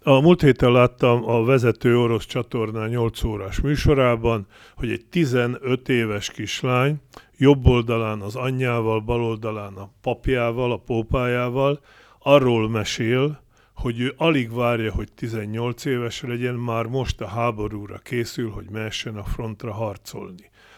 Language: Hungarian